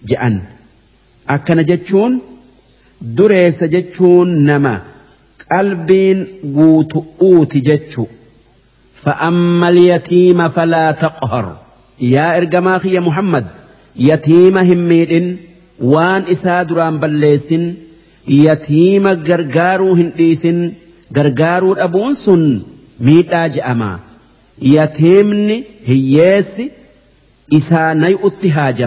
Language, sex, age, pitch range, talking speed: Arabic, male, 50-69, 140-180 Hz, 75 wpm